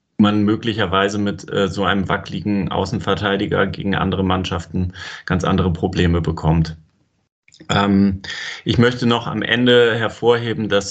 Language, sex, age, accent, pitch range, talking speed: German, male, 30-49, German, 95-110 Hz, 125 wpm